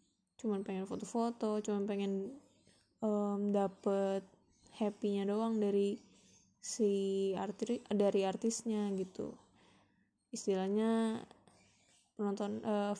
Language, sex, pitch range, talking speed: Indonesian, female, 200-220 Hz, 90 wpm